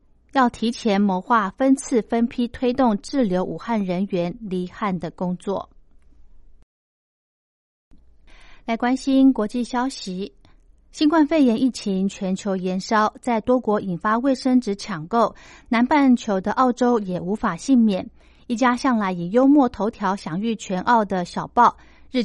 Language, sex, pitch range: Chinese, female, 190-250 Hz